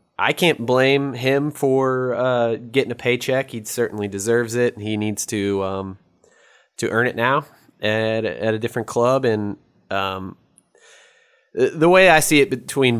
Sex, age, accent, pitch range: male, 20-39, American, 100-120 Hz